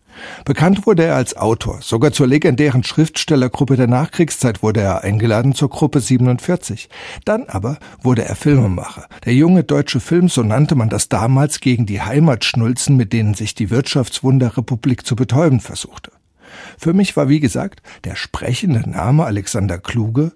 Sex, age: male, 50-69